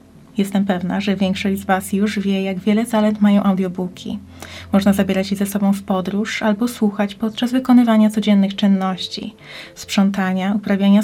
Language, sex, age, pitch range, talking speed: Polish, female, 20-39, 195-215 Hz, 150 wpm